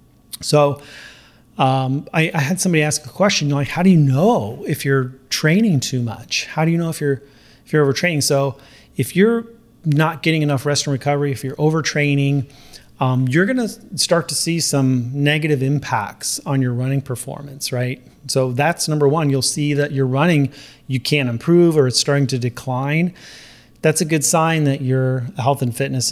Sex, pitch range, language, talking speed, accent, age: male, 130-150 Hz, English, 185 wpm, American, 30-49